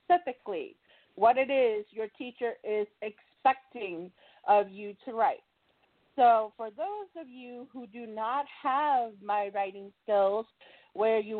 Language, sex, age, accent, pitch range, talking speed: English, female, 40-59, American, 230-290 Hz, 135 wpm